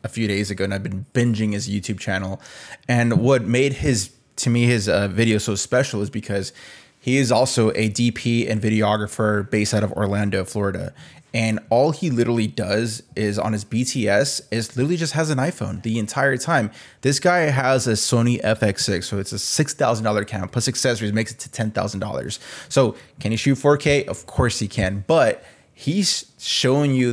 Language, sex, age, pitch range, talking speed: English, male, 20-39, 110-135 Hz, 185 wpm